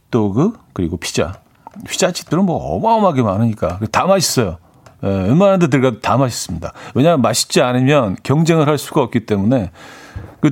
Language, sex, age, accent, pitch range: Korean, male, 40-59, native, 110-150 Hz